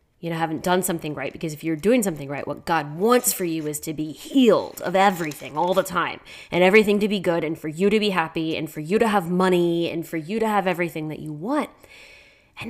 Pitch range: 160-200 Hz